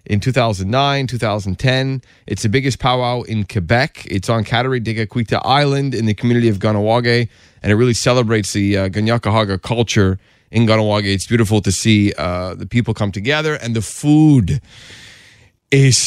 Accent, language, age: American, English, 30-49